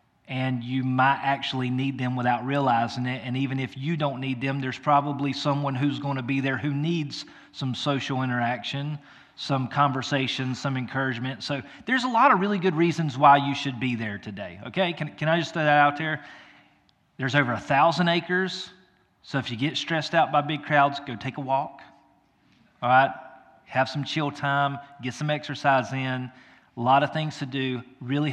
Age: 30-49